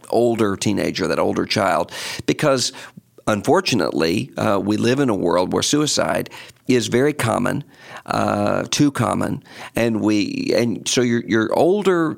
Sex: male